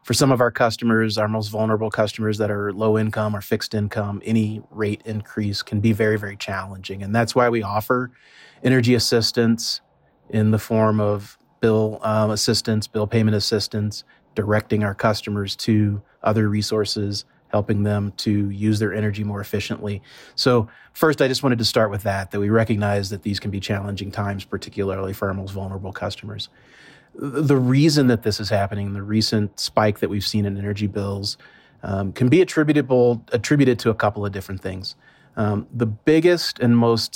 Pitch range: 105-120 Hz